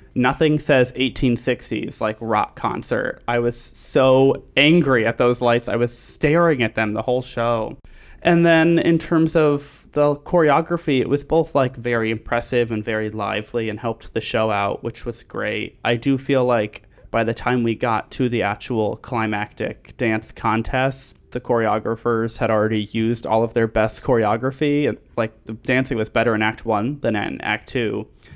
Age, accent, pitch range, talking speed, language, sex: 20-39, American, 115-135 Hz, 175 wpm, English, male